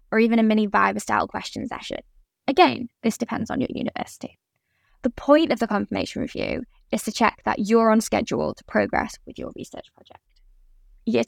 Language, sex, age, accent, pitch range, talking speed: English, female, 10-29, British, 210-250 Hz, 175 wpm